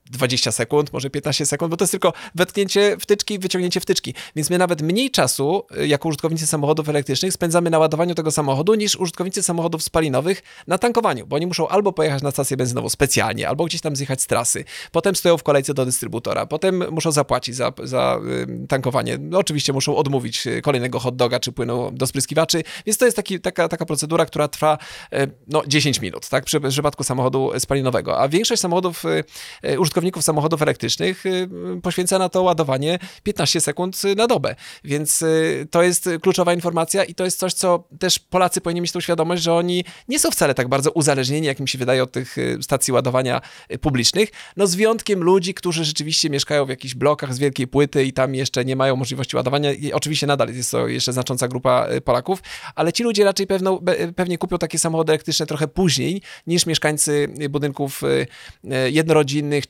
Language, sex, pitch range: Polish, male, 135-180 Hz